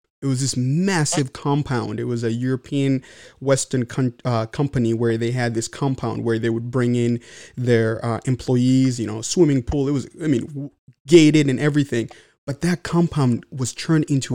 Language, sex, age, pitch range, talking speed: English, male, 30-49, 125-150 Hz, 175 wpm